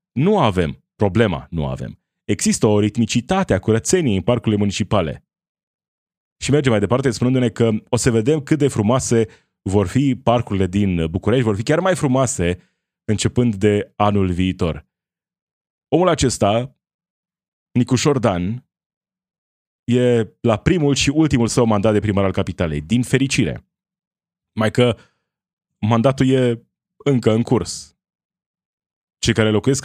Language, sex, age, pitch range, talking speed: Romanian, male, 20-39, 105-140 Hz, 135 wpm